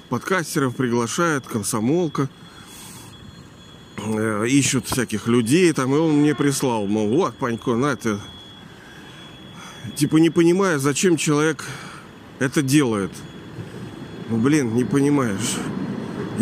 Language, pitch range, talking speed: Russian, 125-160 Hz, 100 wpm